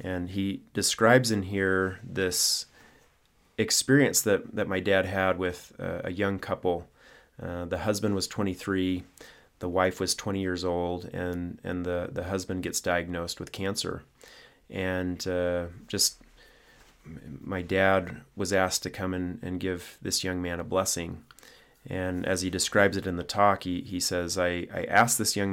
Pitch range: 90-100 Hz